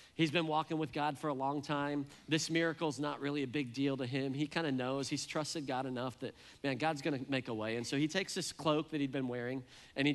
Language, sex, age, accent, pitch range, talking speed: English, male, 40-59, American, 125-155 Hz, 260 wpm